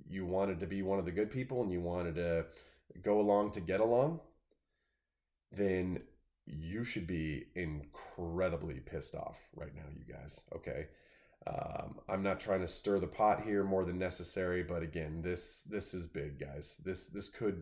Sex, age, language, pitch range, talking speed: male, 20-39, English, 90-100 Hz, 175 wpm